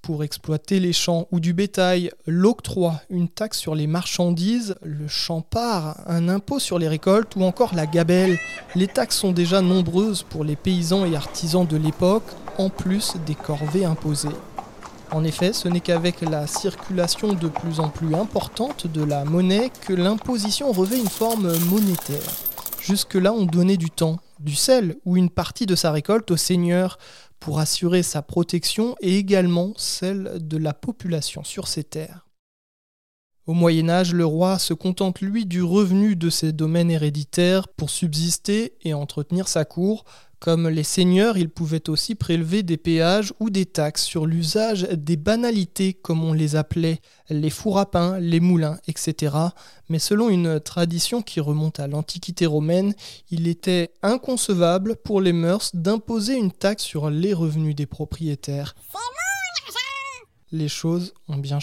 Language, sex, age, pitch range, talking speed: French, male, 20-39, 160-195 Hz, 160 wpm